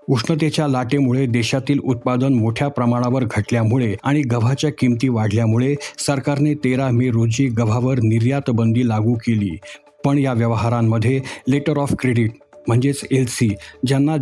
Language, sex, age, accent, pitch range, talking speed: Marathi, male, 50-69, native, 120-140 Hz, 120 wpm